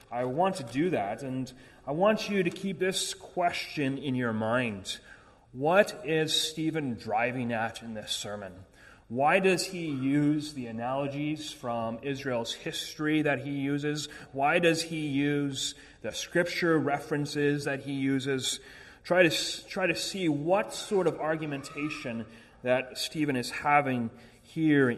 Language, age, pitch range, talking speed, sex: English, 30-49, 125-175 Hz, 145 wpm, male